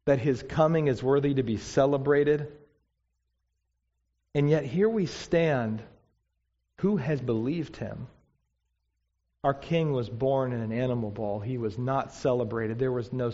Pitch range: 110-145 Hz